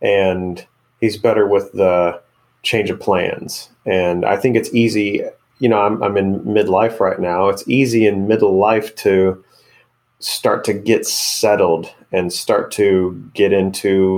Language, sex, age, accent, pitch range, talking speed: English, male, 30-49, American, 90-110 Hz, 150 wpm